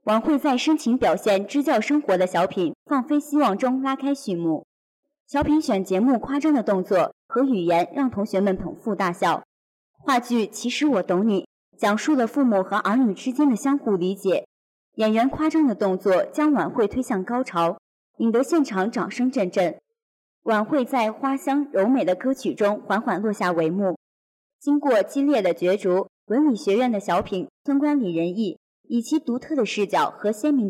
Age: 30-49